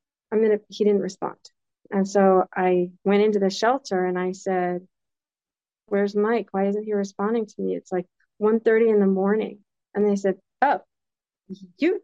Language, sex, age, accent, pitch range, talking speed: English, female, 40-59, American, 185-250 Hz, 170 wpm